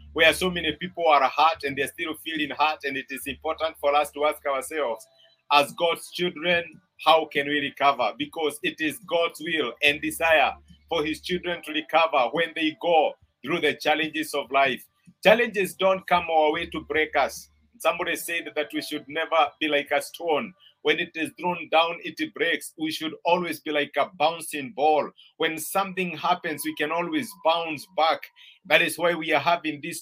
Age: 50-69